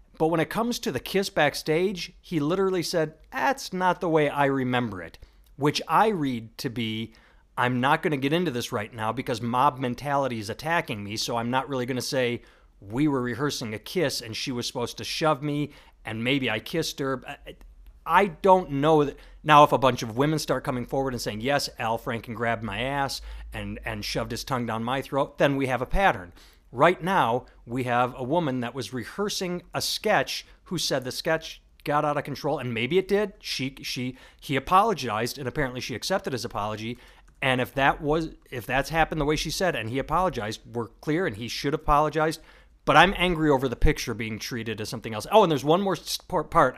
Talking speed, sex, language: 215 wpm, male, English